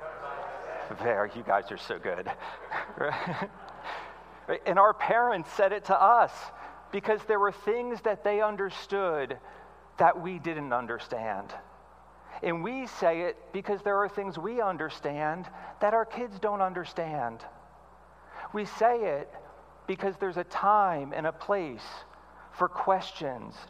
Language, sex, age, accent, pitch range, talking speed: English, male, 50-69, American, 165-210 Hz, 130 wpm